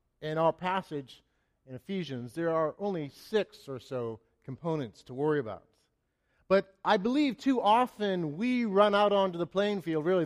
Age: 40-59